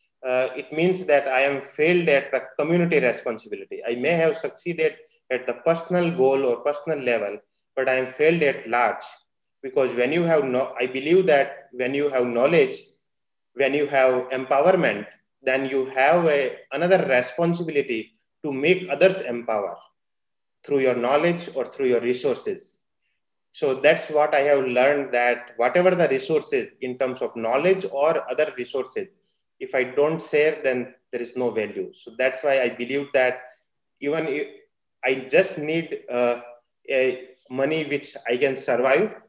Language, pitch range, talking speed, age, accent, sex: English, 130-185 Hz, 155 wpm, 30-49, Indian, male